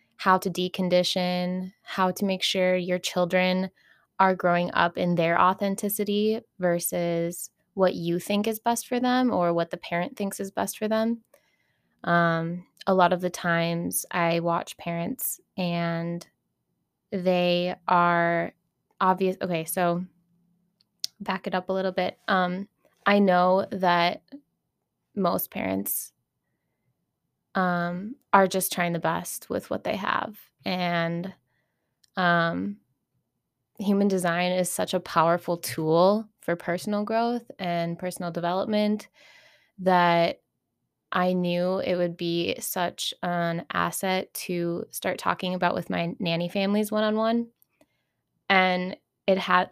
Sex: female